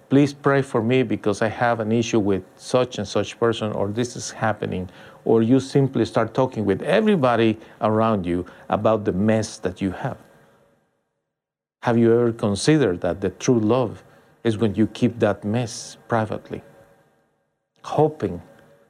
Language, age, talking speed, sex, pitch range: English, 50-69, 155 wpm, male, 105-135 Hz